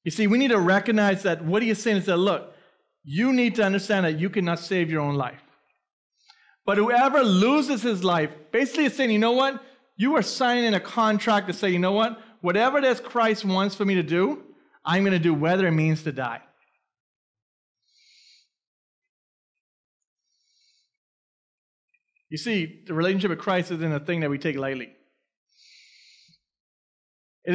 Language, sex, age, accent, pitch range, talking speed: English, male, 30-49, American, 165-230 Hz, 170 wpm